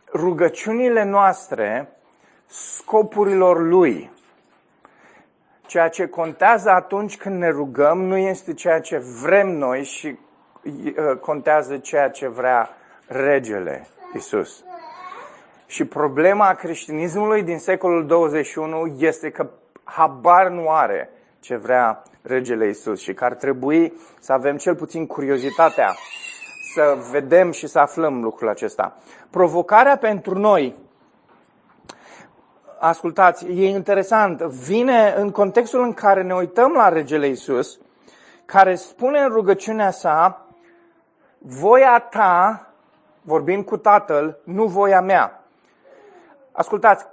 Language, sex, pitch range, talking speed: Romanian, male, 160-220 Hz, 110 wpm